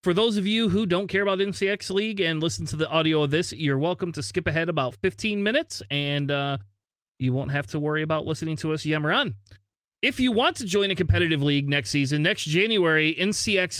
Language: English